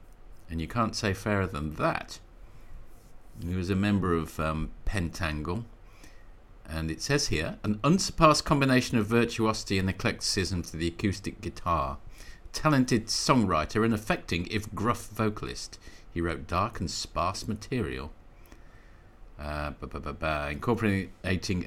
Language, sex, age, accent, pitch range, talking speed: English, male, 50-69, British, 80-110 Hz, 120 wpm